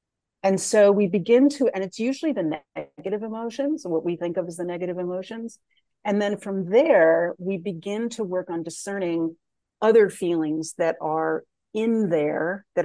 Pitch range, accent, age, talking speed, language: 160-195 Hz, American, 40-59, 175 wpm, English